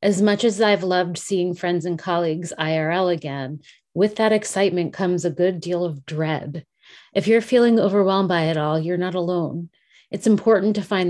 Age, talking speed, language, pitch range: 30-49, 185 wpm, English, 160-195 Hz